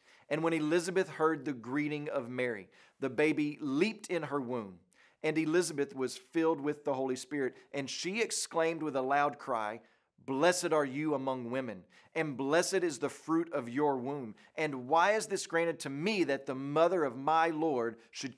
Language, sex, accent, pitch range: English, male, American, 140-185 Hz